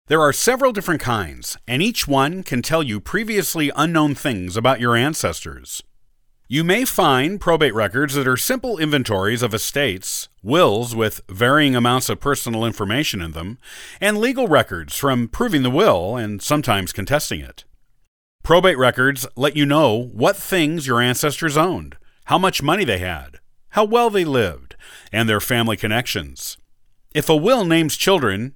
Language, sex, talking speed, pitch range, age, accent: English, male, 160 wpm, 105-155 Hz, 50-69, American